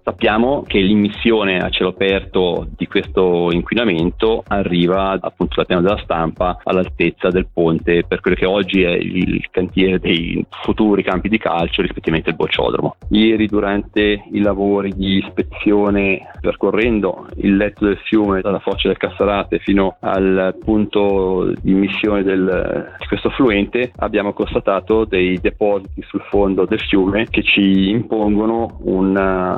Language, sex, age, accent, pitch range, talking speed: Italian, male, 30-49, native, 95-105 Hz, 140 wpm